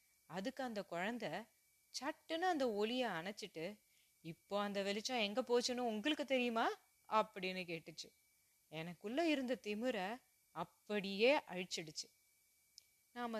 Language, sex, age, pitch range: Tamil, female, 30-49, 175-240 Hz